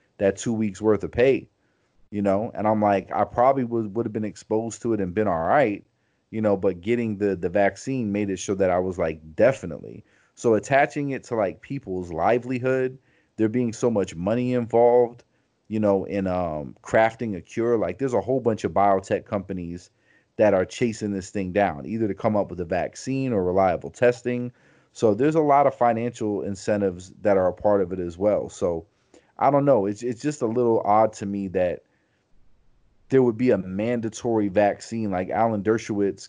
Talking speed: 200 wpm